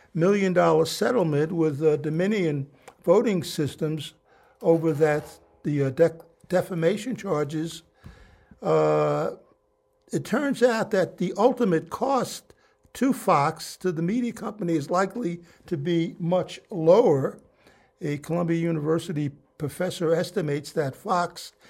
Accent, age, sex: American, 60-79, male